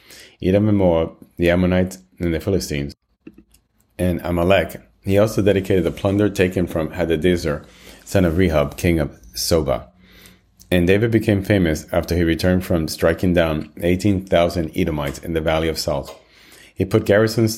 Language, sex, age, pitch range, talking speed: English, male, 30-49, 80-95 Hz, 150 wpm